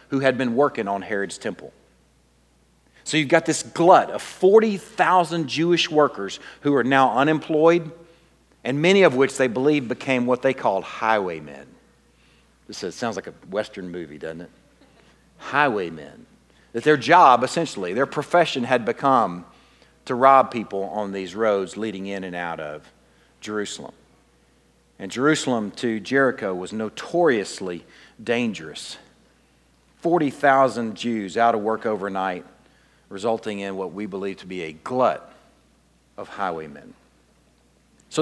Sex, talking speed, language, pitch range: male, 135 wpm, English, 95-145 Hz